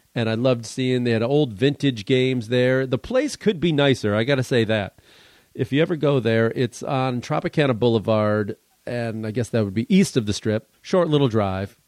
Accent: American